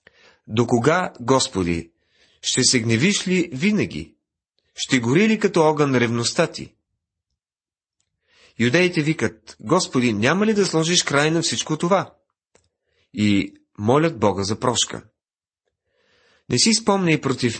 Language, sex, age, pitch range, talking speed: Bulgarian, male, 40-59, 110-155 Hz, 120 wpm